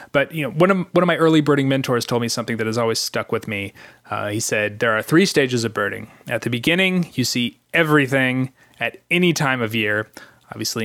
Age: 20-39